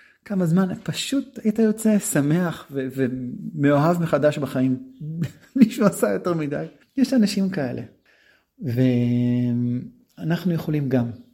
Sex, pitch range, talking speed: male, 120-140 Hz, 110 wpm